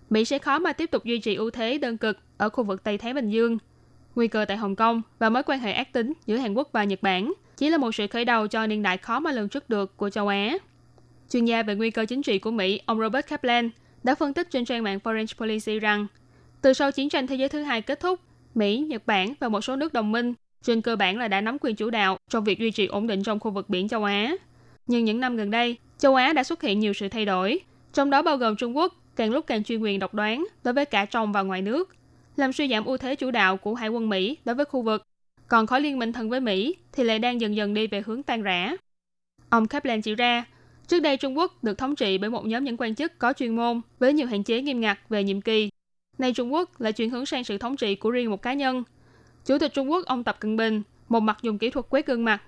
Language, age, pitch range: Vietnamese, 10-29, 215-260 Hz